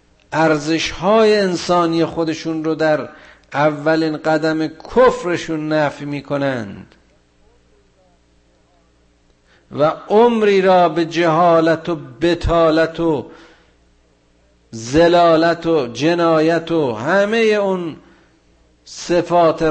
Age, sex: 50-69, male